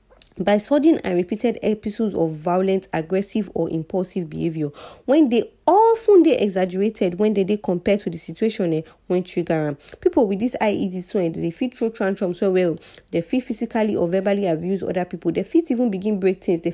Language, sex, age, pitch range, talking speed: English, female, 30-49, 170-215 Hz, 185 wpm